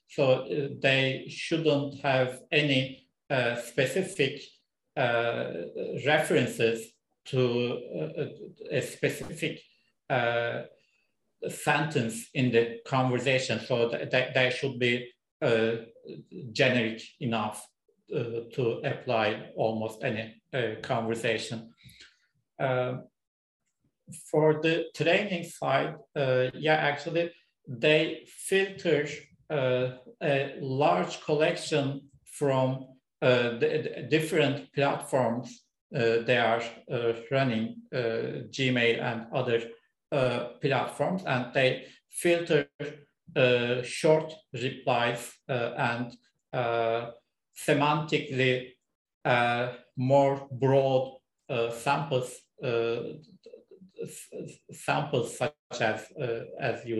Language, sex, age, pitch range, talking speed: English, male, 50-69, 120-145 Hz, 100 wpm